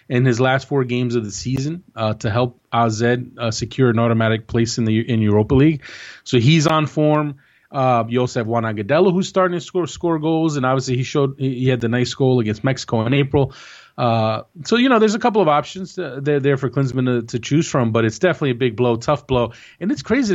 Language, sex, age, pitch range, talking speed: English, male, 30-49, 115-150 Hz, 230 wpm